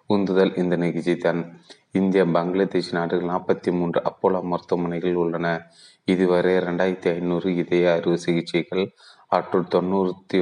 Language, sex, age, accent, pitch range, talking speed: Tamil, male, 30-49, native, 85-90 Hz, 115 wpm